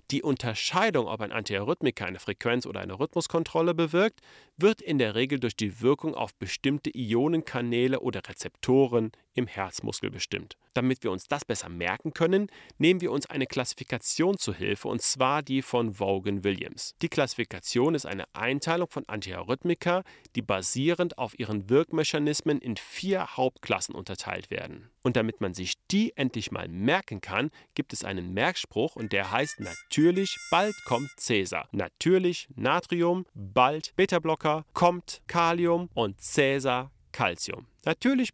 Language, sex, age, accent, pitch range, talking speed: German, male, 40-59, German, 110-160 Hz, 145 wpm